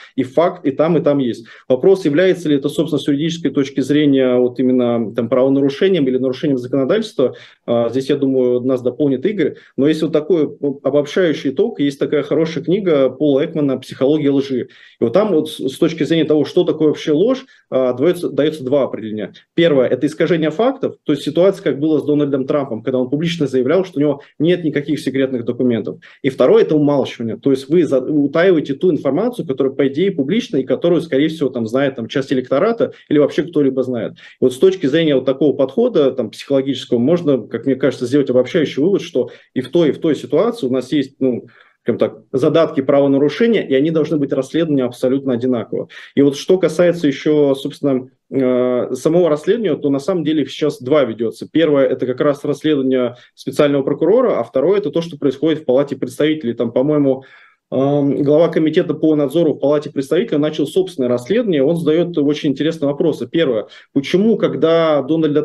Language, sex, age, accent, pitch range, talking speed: Russian, male, 20-39, native, 130-155 Hz, 180 wpm